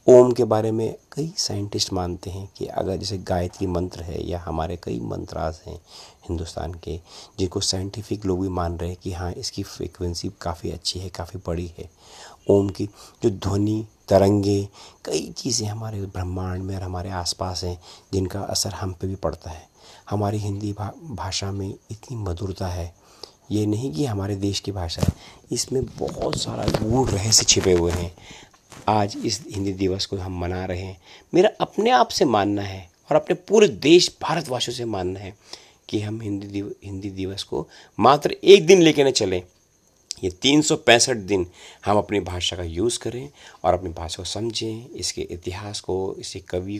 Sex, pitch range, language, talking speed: male, 90-105 Hz, Hindi, 175 wpm